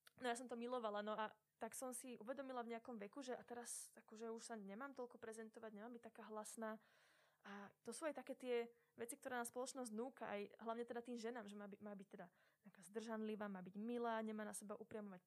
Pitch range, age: 220-265 Hz, 20-39